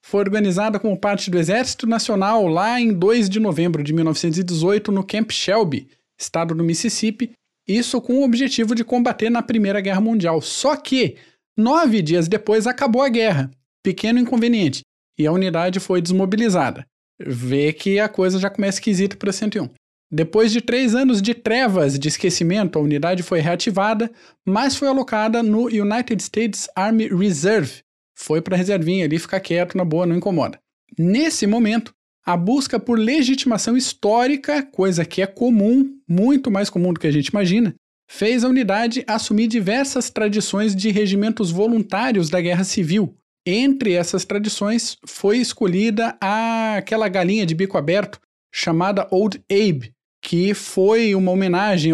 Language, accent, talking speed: Portuguese, Brazilian, 155 wpm